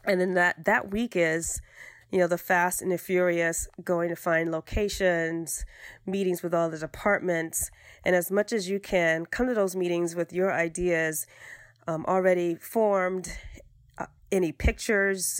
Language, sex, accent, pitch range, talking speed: English, female, American, 170-195 Hz, 160 wpm